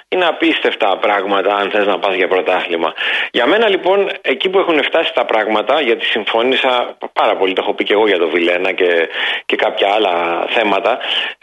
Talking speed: 185 wpm